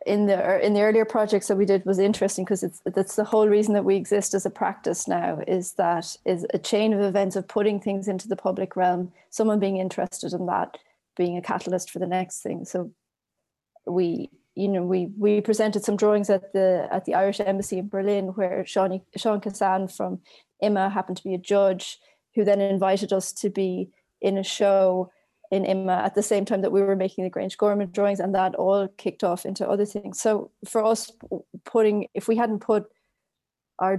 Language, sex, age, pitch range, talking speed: English, female, 30-49, 185-205 Hz, 210 wpm